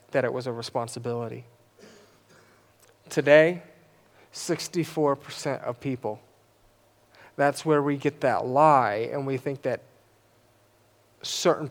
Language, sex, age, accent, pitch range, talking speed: English, male, 30-49, American, 120-150 Hz, 100 wpm